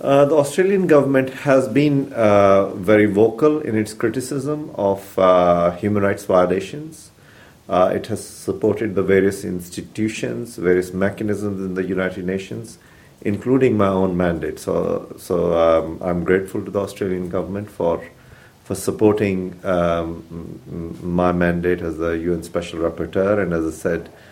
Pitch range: 90-110 Hz